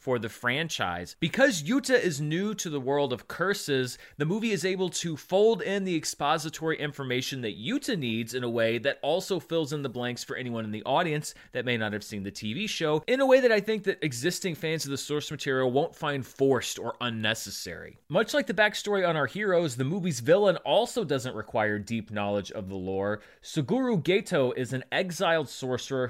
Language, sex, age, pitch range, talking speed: English, male, 30-49, 125-190 Hz, 205 wpm